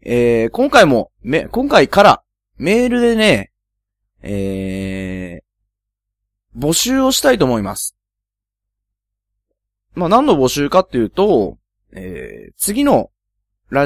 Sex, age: male, 20-39